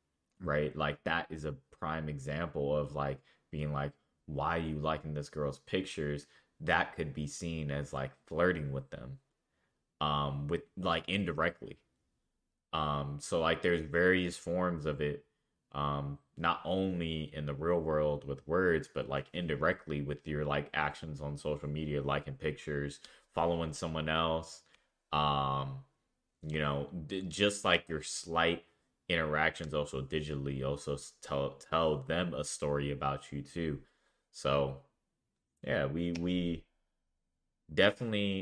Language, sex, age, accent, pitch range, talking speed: English, male, 20-39, American, 70-85 Hz, 135 wpm